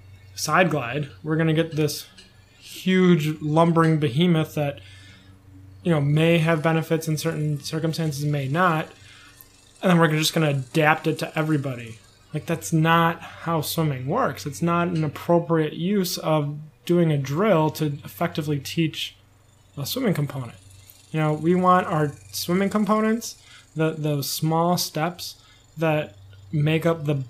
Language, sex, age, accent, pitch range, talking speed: English, male, 20-39, American, 125-165 Hz, 145 wpm